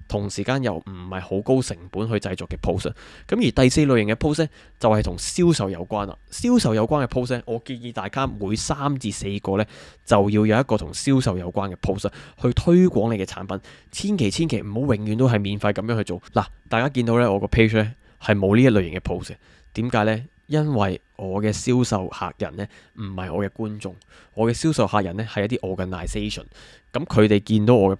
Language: Chinese